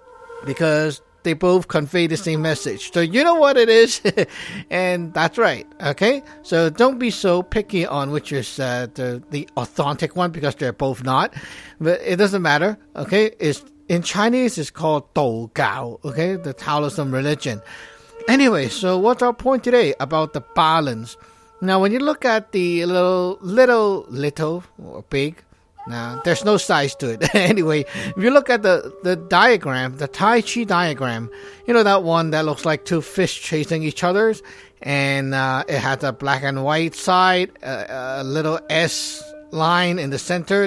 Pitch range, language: 145-210 Hz, English